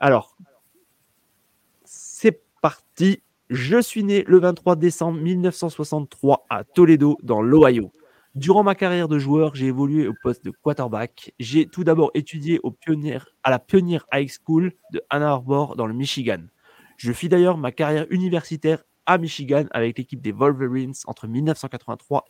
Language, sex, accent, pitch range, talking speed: French, male, French, 125-170 Hz, 150 wpm